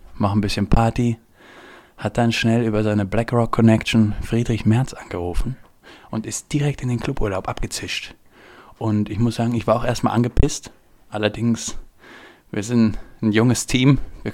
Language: German